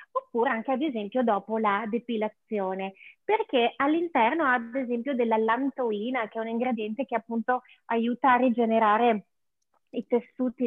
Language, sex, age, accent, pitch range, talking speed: Italian, female, 30-49, native, 215-270 Hz, 140 wpm